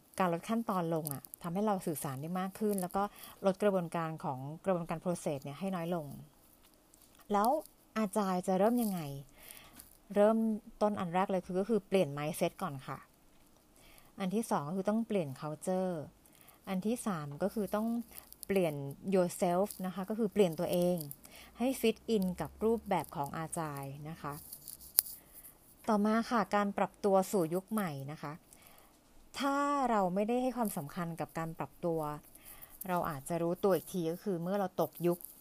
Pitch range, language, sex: 165-205 Hz, Thai, female